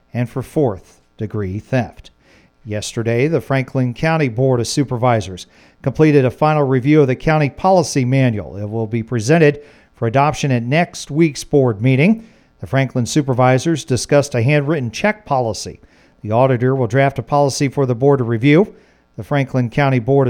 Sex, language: male, English